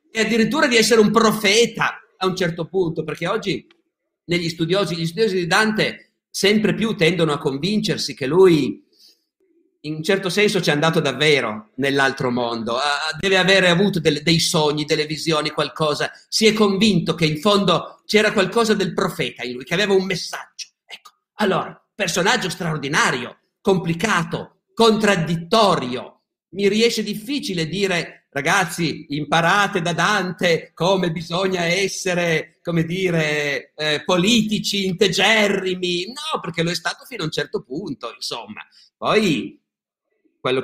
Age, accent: 50-69, native